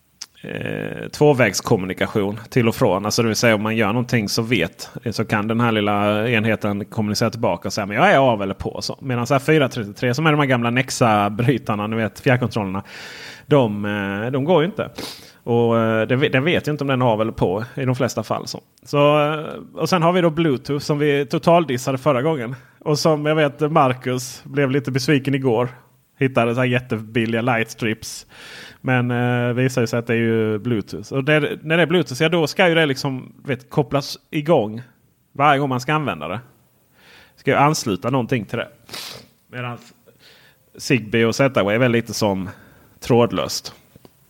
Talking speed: 190 wpm